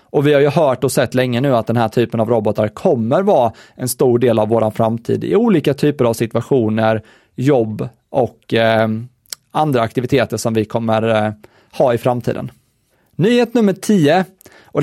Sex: male